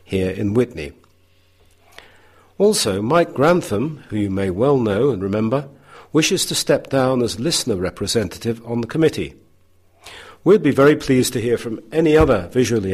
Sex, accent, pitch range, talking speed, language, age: male, British, 95-135 Hz, 155 wpm, English, 50-69